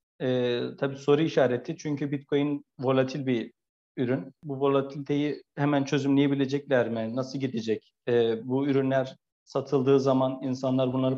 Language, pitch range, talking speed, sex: Turkish, 130-145 Hz, 125 wpm, male